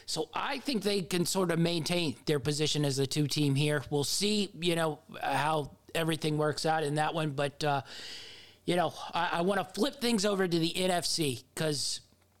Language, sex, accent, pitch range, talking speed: English, male, American, 150-190 Hz, 190 wpm